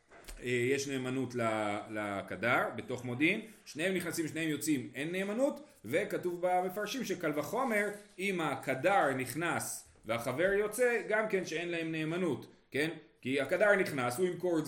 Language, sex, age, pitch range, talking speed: Hebrew, male, 30-49, 120-190 Hz, 130 wpm